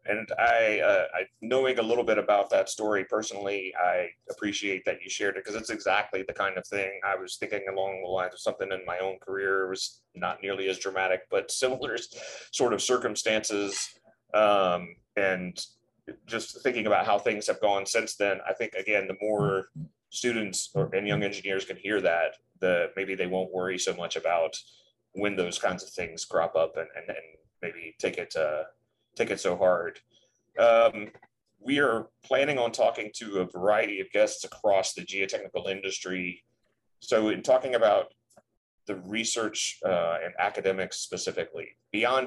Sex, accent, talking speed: male, American, 175 wpm